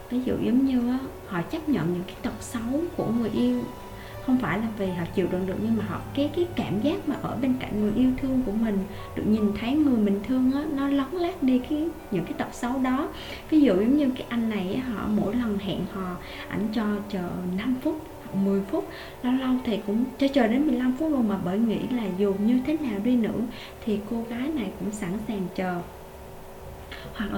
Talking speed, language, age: 235 wpm, English, 20-39